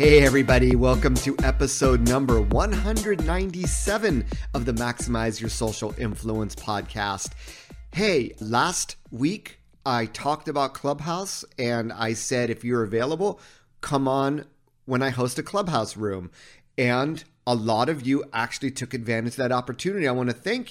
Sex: male